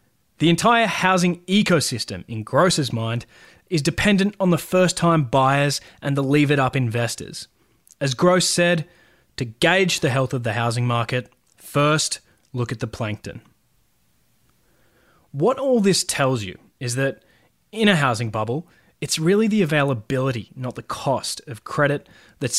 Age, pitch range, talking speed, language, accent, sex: 20-39, 125-170 Hz, 145 wpm, English, Australian, male